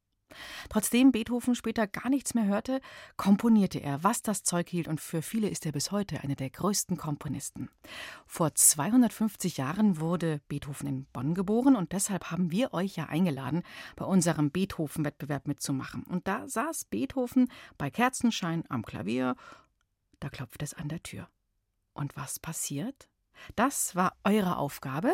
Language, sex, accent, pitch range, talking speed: German, female, German, 155-205 Hz, 155 wpm